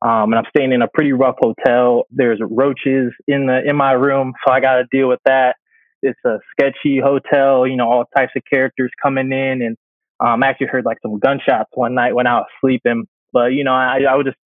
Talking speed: 230 wpm